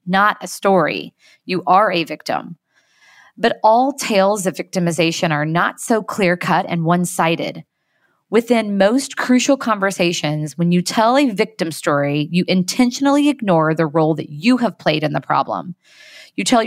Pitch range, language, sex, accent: 165-220 Hz, English, female, American